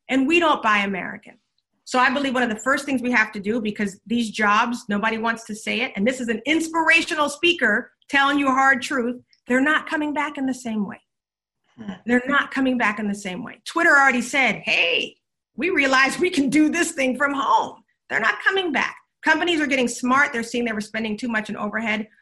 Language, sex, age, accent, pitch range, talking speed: English, female, 40-59, American, 225-275 Hz, 220 wpm